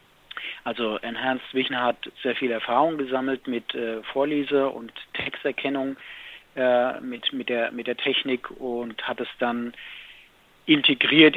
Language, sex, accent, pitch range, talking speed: German, male, German, 120-140 Hz, 130 wpm